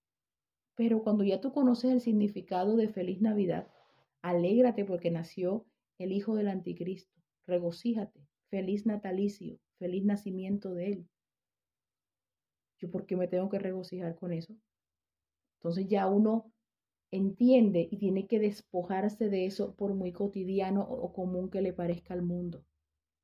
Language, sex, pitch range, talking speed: English, female, 175-210 Hz, 135 wpm